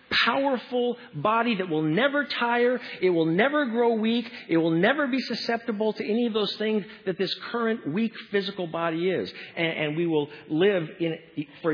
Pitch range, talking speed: 155-205 Hz, 180 wpm